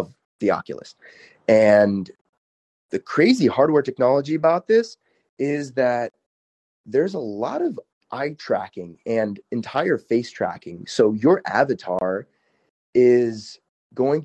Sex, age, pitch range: male, 30-49, 105-140 Hz